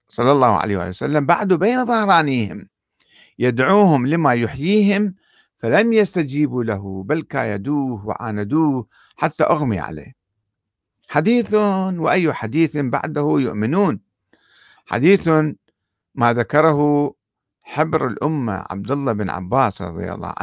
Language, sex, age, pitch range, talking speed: Arabic, male, 50-69, 120-180 Hz, 105 wpm